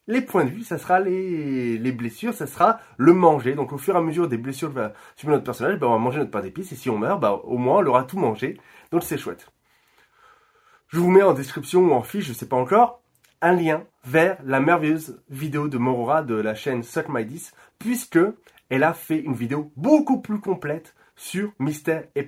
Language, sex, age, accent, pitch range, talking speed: French, male, 20-39, French, 130-175 Hz, 225 wpm